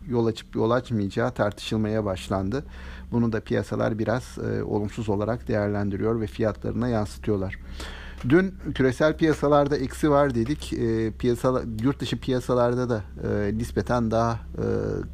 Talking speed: 130 wpm